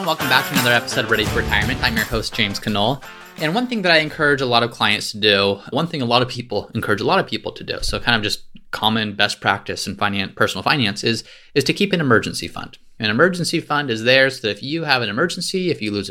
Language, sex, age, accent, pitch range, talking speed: English, male, 30-49, American, 105-140 Hz, 270 wpm